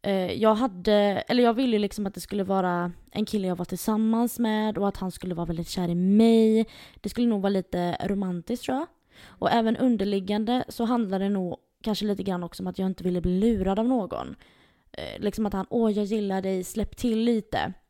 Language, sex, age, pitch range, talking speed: Swedish, female, 20-39, 185-225 Hz, 205 wpm